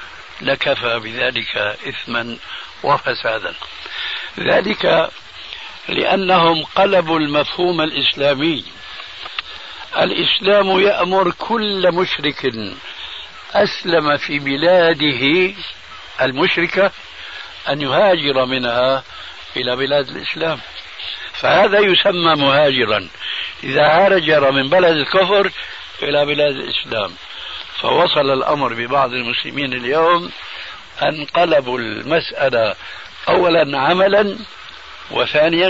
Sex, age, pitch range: male, 60-79, 135-185 Hz